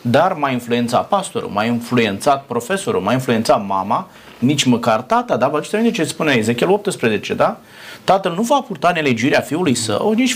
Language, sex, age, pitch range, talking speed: Romanian, male, 30-49, 120-195 Hz, 160 wpm